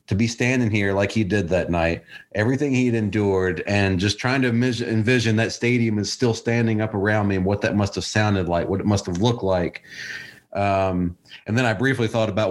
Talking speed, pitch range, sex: 205 wpm, 95-115 Hz, male